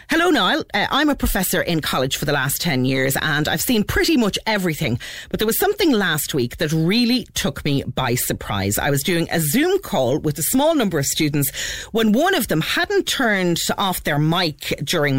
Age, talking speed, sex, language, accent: 40-59, 205 wpm, female, English, Irish